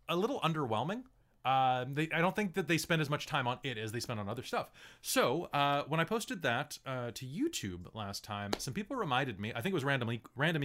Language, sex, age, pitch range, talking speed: English, male, 30-49, 110-150 Hz, 230 wpm